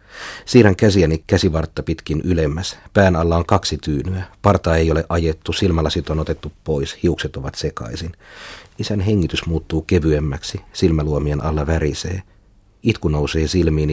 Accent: native